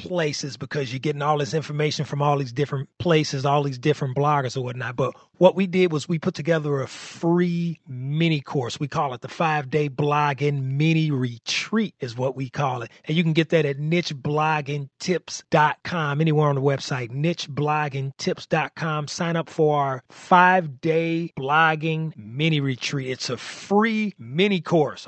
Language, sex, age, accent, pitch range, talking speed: English, male, 30-49, American, 130-165 Hz, 170 wpm